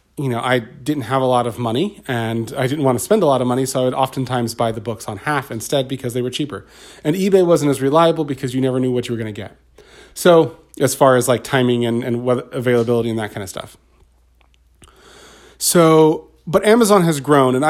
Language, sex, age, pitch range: English, male, 30-49, 120-155 Hz